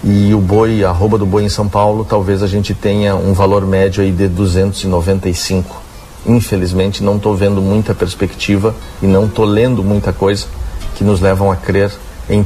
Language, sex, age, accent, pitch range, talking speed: Portuguese, male, 50-69, Brazilian, 95-105 Hz, 185 wpm